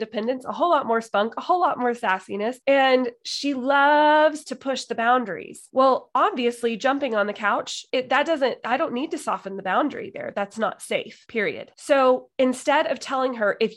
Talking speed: 195 wpm